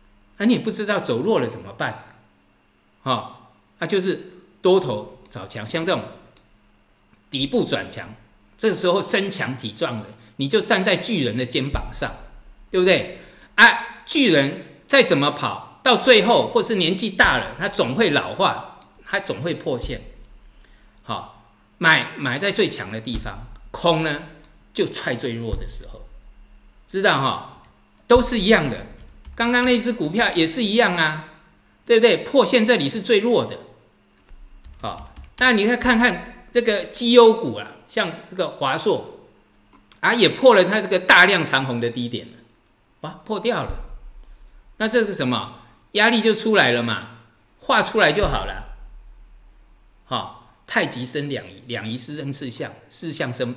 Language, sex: Chinese, male